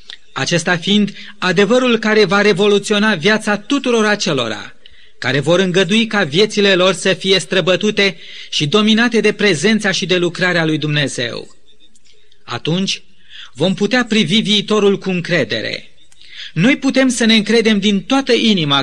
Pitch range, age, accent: 175-225 Hz, 30-49, native